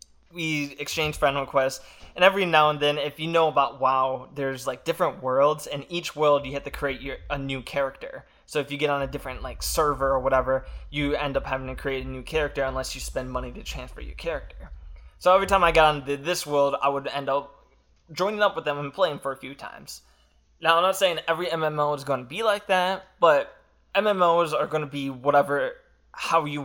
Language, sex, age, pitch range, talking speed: English, male, 20-39, 135-170 Hz, 225 wpm